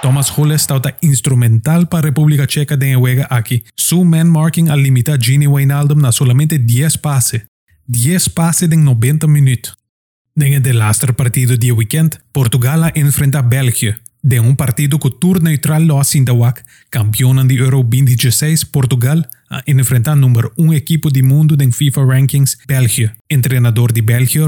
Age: 20-39